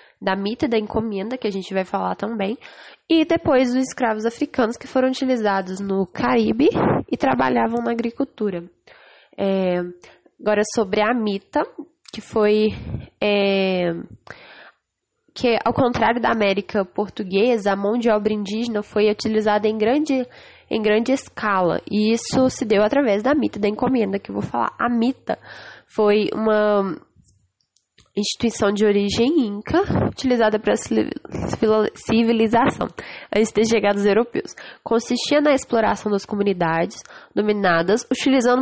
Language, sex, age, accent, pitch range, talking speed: English, female, 10-29, Brazilian, 205-255 Hz, 135 wpm